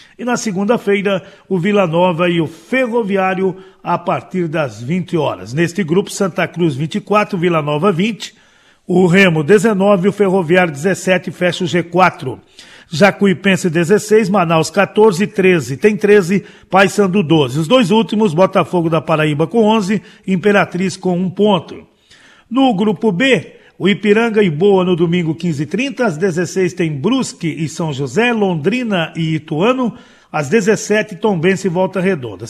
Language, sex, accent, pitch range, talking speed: Portuguese, male, Brazilian, 170-210 Hz, 145 wpm